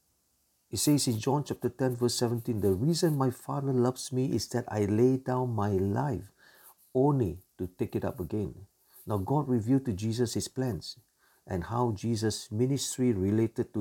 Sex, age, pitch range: male, 50-69, 105-130 Hz